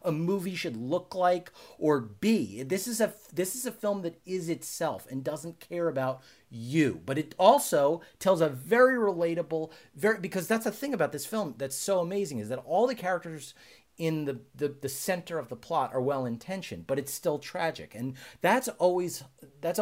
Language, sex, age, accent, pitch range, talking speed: English, male, 30-49, American, 115-170 Hz, 190 wpm